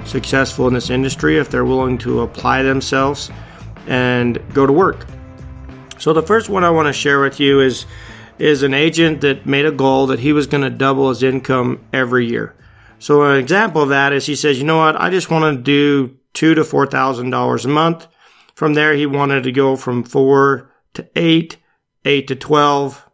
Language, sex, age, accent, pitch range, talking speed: English, male, 40-59, American, 130-155 Hz, 200 wpm